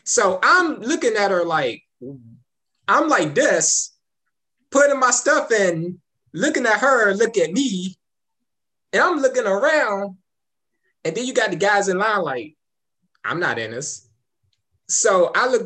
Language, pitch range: English, 155-255 Hz